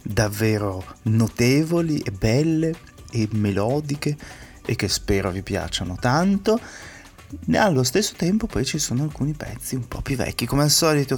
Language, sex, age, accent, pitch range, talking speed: Italian, male, 30-49, native, 110-135 Hz, 150 wpm